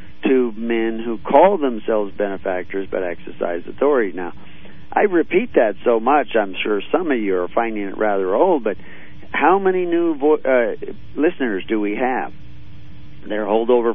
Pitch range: 100-115 Hz